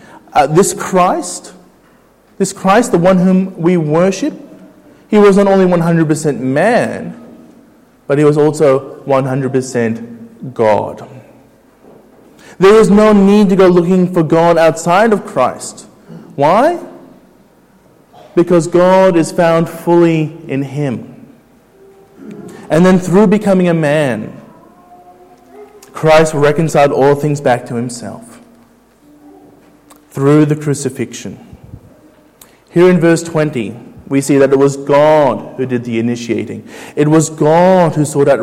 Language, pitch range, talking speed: English, 145-190 Hz, 120 wpm